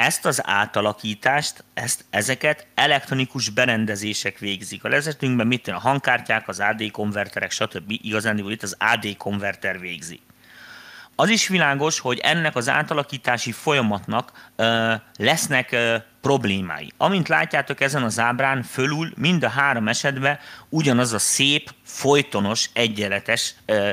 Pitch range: 105-140 Hz